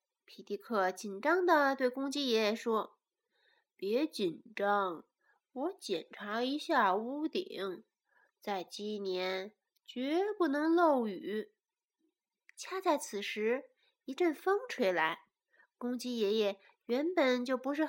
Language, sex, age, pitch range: Chinese, female, 20-39, 205-330 Hz